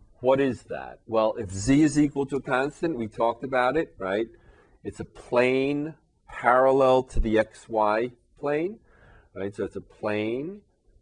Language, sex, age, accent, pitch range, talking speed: English, male, 40-59, American, 100-135 Hz, 160 wpm